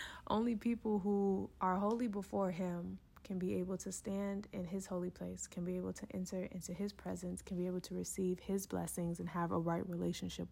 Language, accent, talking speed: English, American, 205 wpm